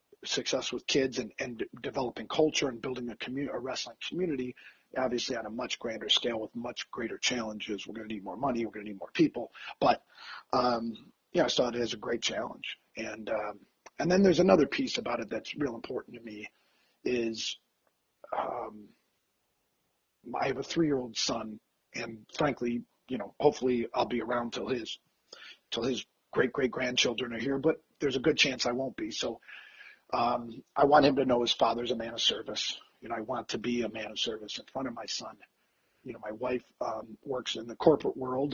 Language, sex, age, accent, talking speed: English, male, 40-59, American, 200 wpm